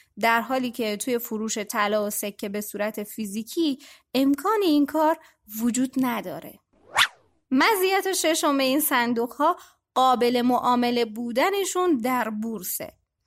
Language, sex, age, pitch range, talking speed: Persian, female, 20-39, 235-310 Hz, 120 wpm